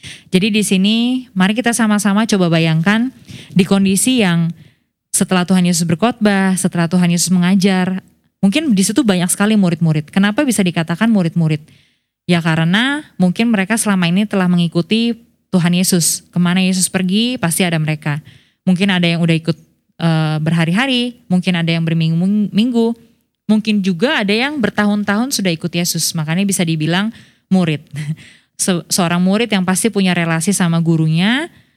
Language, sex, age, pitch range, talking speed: Indonesian, female, 20-39, 170-220 Hz, 145 wpm